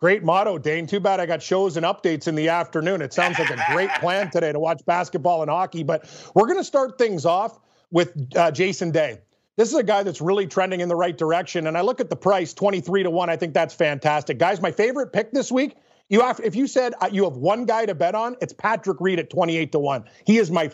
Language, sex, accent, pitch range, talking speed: English, male, American, 170-225 Hz, 255 wpm